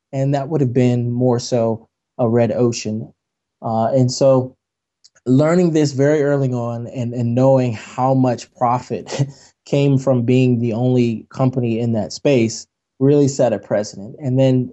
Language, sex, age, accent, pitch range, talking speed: English, male, 20-39, American, 110-130 Hz, 160 wpm